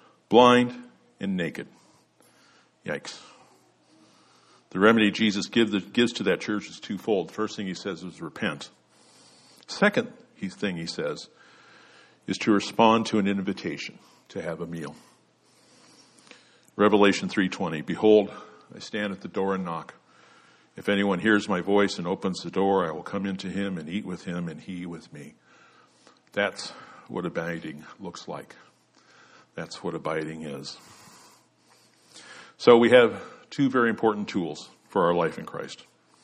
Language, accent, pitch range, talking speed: English, American, 95-115 Hz, 145 wpm